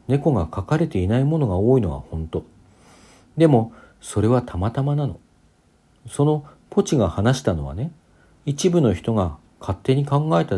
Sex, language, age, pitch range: male, Japanese, 50-69, 90-135 Hz